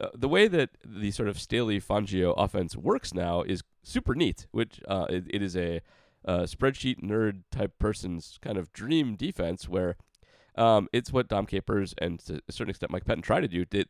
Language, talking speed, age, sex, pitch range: English, 205 wpm, 30-49, male, 85-110 Hz